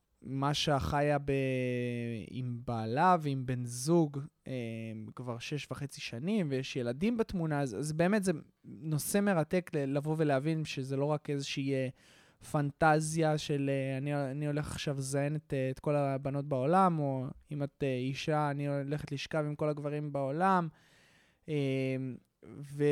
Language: Hebrew